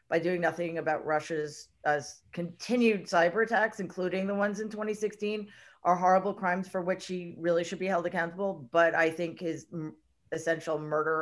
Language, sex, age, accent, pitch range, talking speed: English, female, 40-59, American, 165-205 Hz, 170 wpm